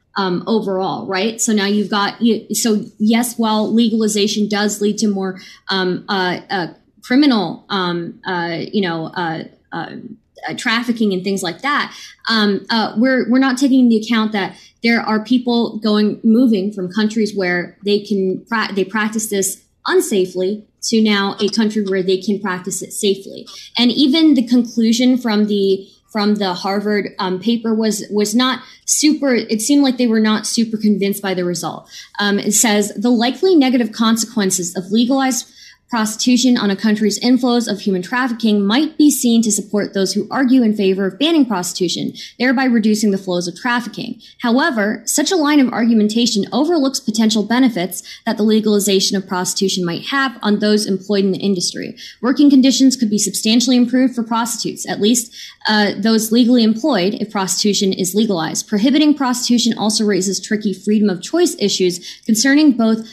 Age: 20-39